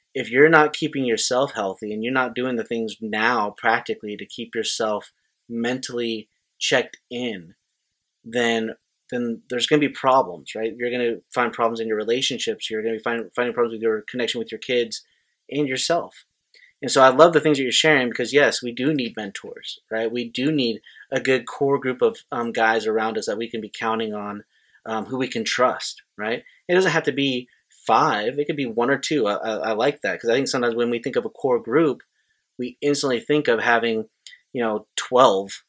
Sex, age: male, 30-49